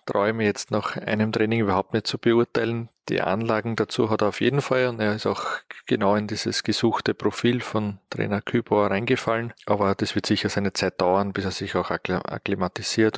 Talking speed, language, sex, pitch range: 190 wpm, German, male, 100-110 Hz